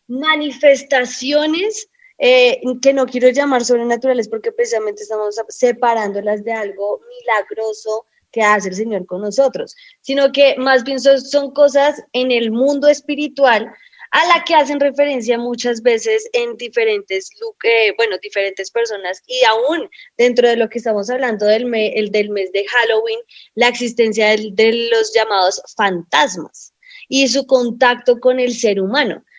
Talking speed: 150 wpm